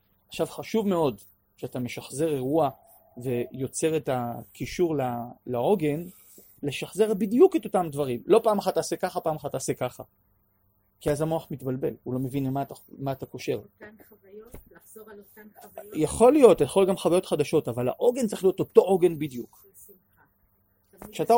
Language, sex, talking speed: Hebrew, male, 135 wpm